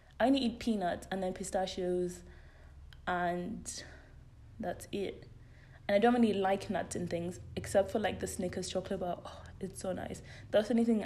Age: 20-39